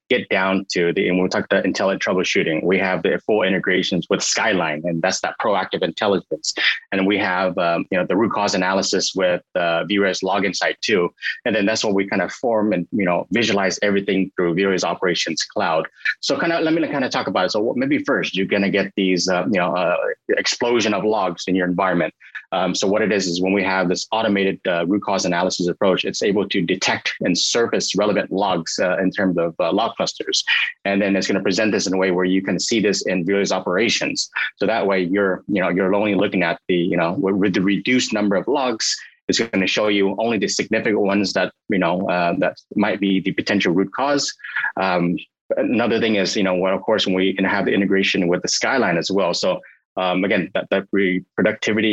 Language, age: English, 30-49